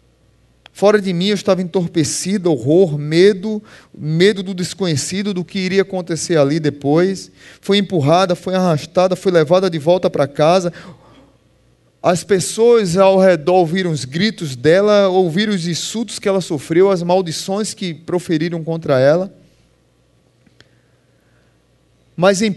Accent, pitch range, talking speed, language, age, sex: Brazilian, 165-200 Hz, 130 wpm, Portuguese, 20-39, male